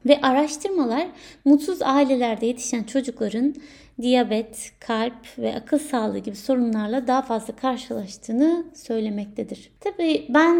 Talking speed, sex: 110 wpm, female